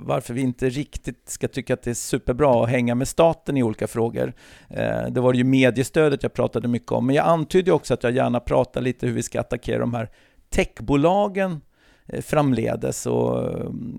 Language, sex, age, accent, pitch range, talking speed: English, male, 50-69, Swedish, 115-135 Hz, 185 wpm